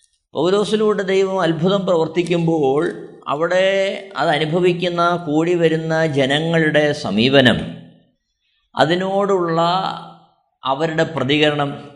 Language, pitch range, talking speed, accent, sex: Malayalam, 145-190 Hz, 70 wpm, native, male